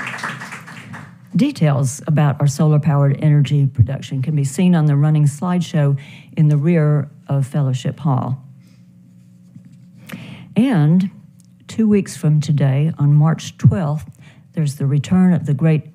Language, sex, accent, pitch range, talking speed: English, female, American, 145-175 Hz, 125 wpm